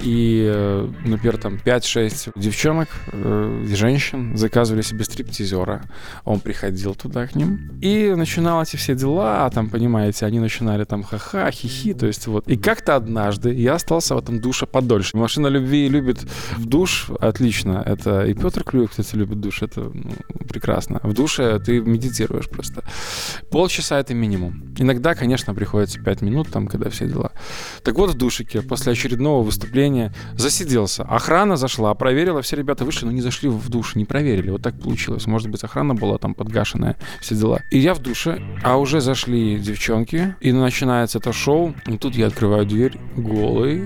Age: 20-39